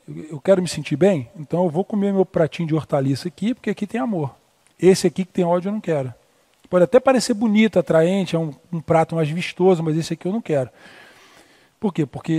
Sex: male